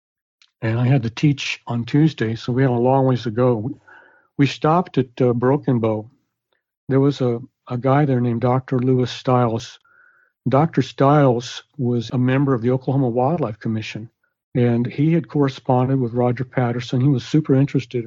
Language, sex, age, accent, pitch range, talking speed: English, male, 60-79, American, 120-135 Hz, 175 wpm